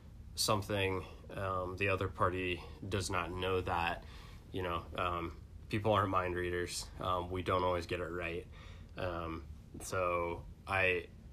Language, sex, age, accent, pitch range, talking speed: English, male, 20-39, American, 85-100 Hz, 140 wpm